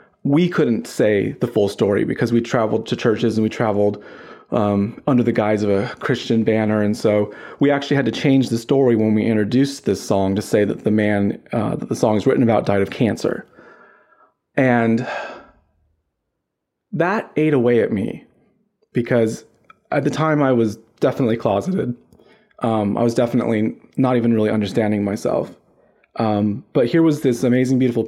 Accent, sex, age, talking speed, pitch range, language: American, male, 30-49, 175 wpm, 110-130 Hz, English